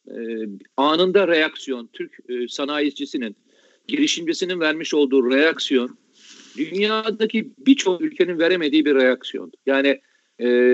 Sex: male